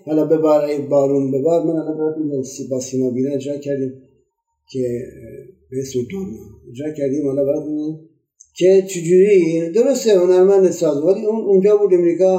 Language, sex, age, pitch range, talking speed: Persian, male, 50-69, 135-170 Hz, 105 wpm